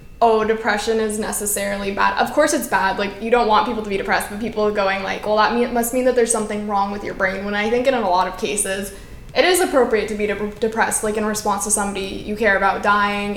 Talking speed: 250 wpm